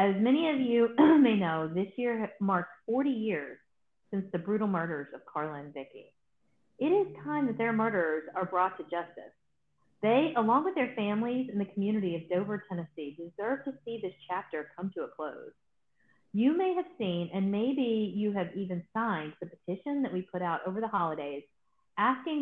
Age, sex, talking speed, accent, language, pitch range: 40-59, female, 185 wpm, American, English, 175-240 Hz